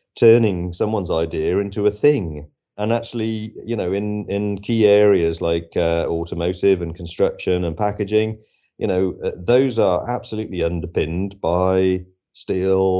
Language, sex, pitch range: English, male, 95-115 Hz